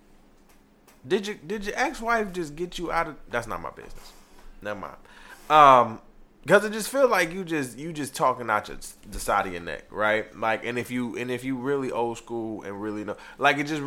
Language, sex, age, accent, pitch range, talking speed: English, male, 20-39, American, 120-185 Hz, 230 wpm